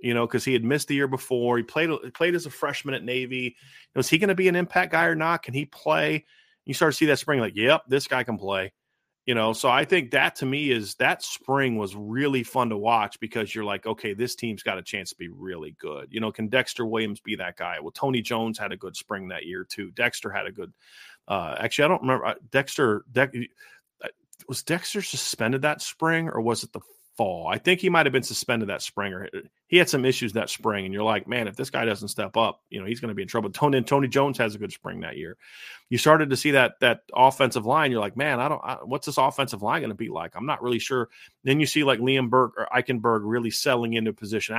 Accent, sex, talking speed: American, male, 255 wpm